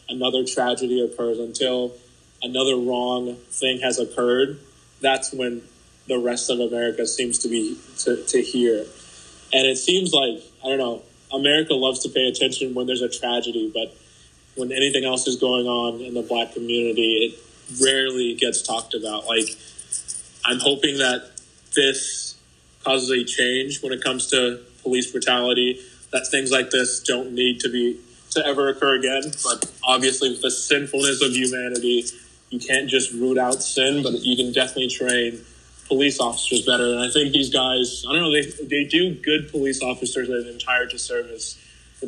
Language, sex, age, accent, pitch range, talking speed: English, male, 20-39, American, 120-130 Hz, 170 wpm